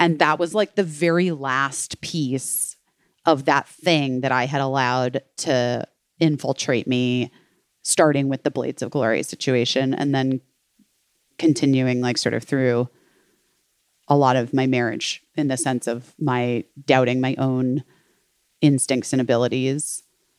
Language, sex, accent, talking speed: English, female, American, 140 wpm